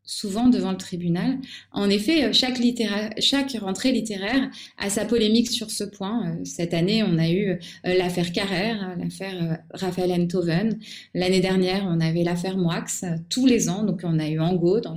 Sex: female